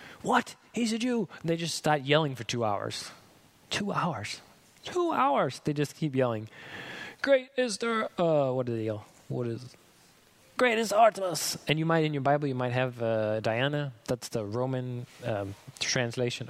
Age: 20-39